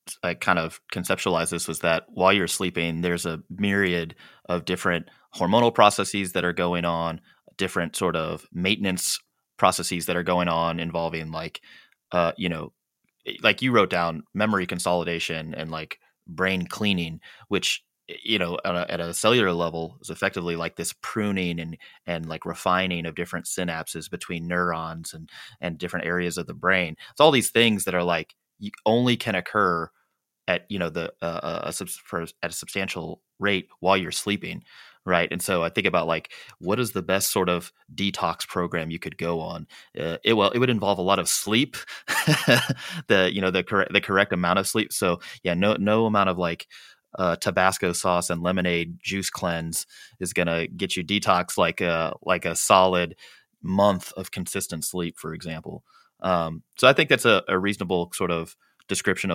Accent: American